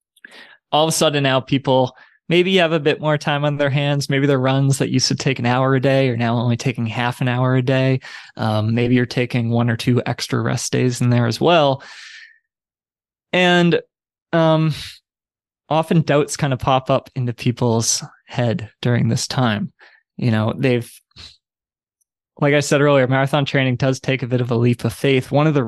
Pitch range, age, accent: 120-140 Hz, 20-39, American